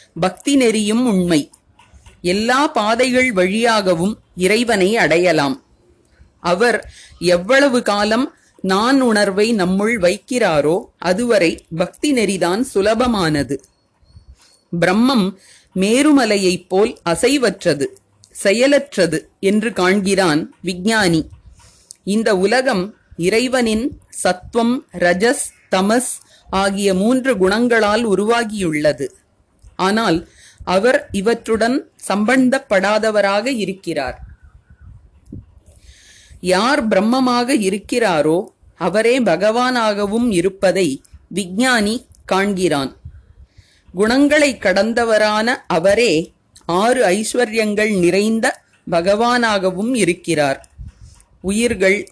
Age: 30-49